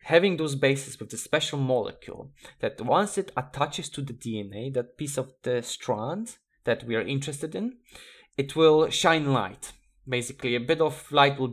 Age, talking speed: 20-39, 175 wpm